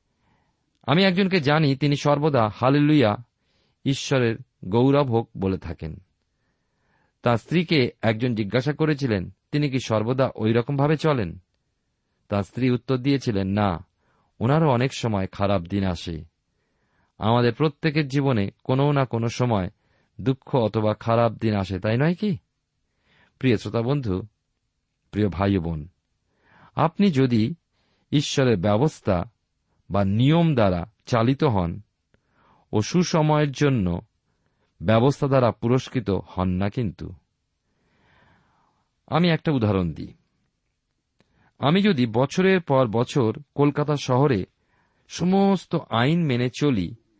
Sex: male